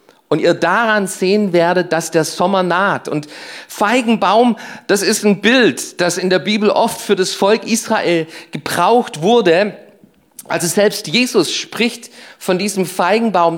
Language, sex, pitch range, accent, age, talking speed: German, male, 165-215 Hz, German, 40-59, 145 wpm